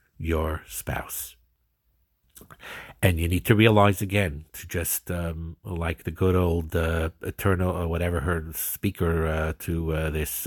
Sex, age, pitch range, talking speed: male, 50-69, 85-100 Hz, 145 wpm